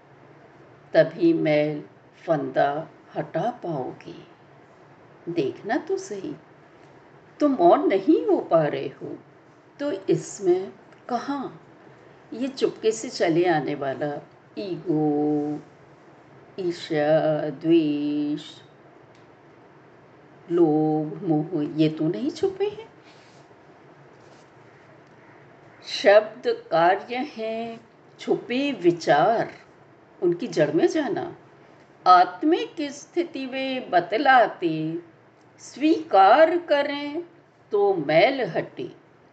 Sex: female